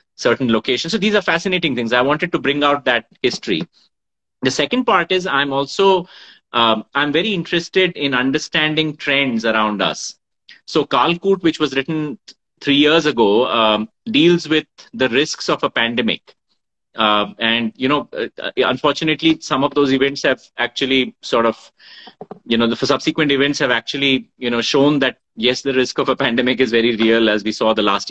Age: 30-49